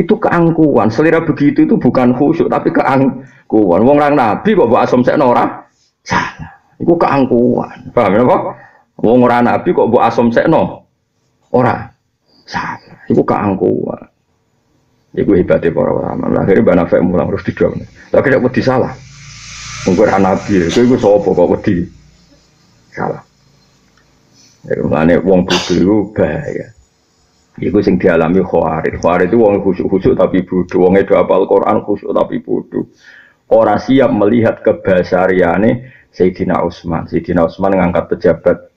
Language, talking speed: Indonesian, 140 wpm